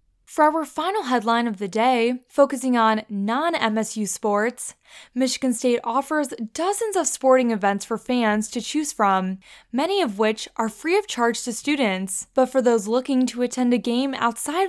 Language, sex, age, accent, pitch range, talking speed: English, female, 10-29, American, 220-270 Hz, 170 wpm